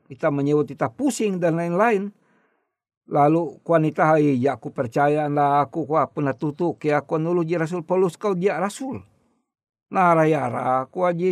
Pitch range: 155-205 Hz